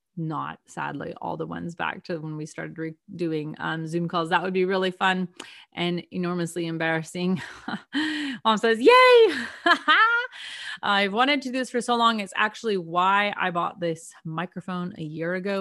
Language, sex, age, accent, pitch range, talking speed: English, female, 30-49, American, 170-220 Hz, 165 wpm